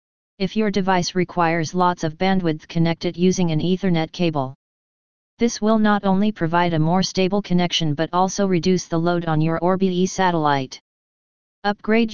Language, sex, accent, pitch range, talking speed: English, female, American, 165-190 Hz, 160 wpm